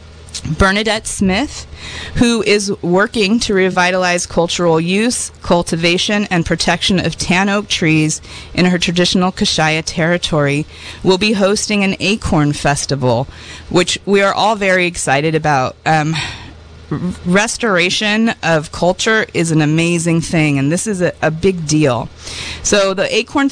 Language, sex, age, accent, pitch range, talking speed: English, female, 30-49, American, 160-200 Hz, 135 wpm